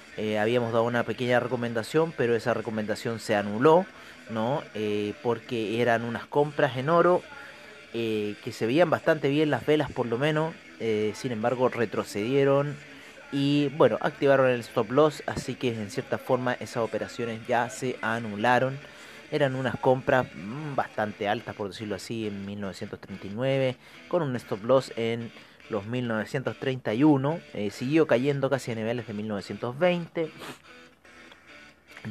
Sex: male